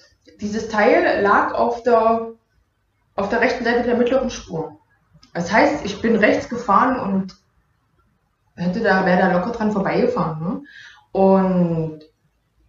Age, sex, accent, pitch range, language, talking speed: 20-39, female, German, 175-240 Hz, German, 130 wpm